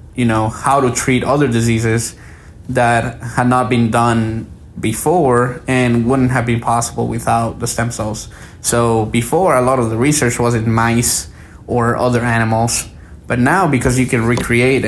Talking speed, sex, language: 165 wpm, male, English